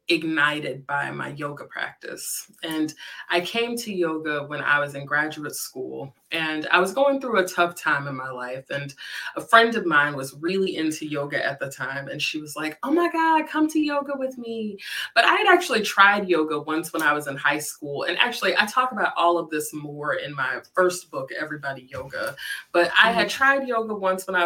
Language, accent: English, American